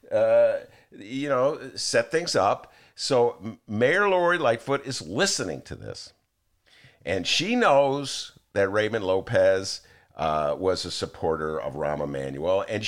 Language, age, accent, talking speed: English, 50-69, American, 130 wpm